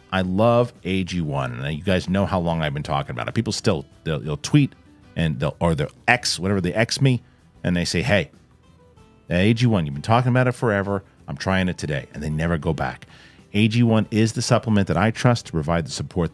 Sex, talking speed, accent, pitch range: male, 210 wpm, American, 90-115 Hz